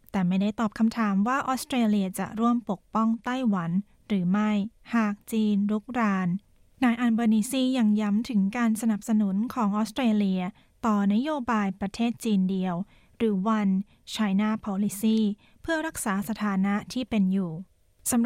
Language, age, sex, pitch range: Thai, 20-39, female, 200-235 Hz